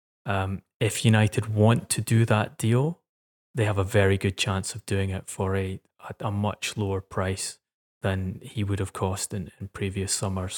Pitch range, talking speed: 95-105 Hz, 180 wpm